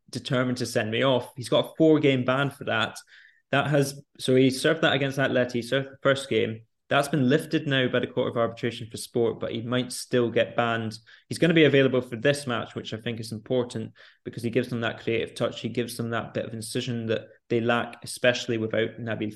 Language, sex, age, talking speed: English, male, 20-39, 230 wpm